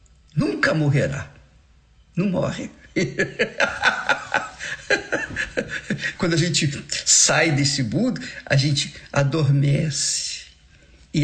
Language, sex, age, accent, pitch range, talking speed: Portuguese, male, 50-69, Brazilian, 130-175 Hz, 75 wpm